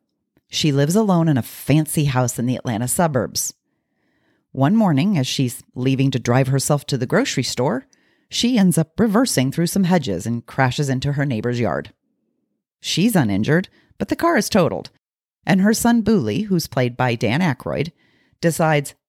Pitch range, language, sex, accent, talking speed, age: 130-180 Hz, English, female, American, 165 wpm, 40-59